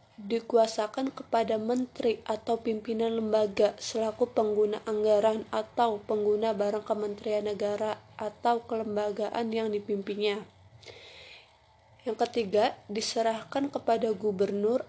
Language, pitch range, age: Indonesian, 210-235 Hz, 20-39